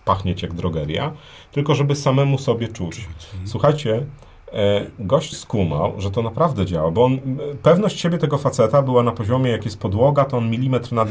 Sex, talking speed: male, 170 wpm